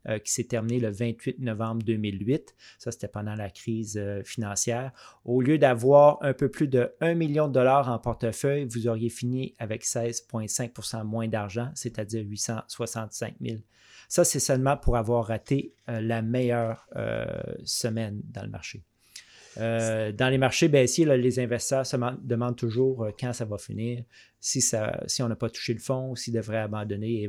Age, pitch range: 30-49, 110-125 Hz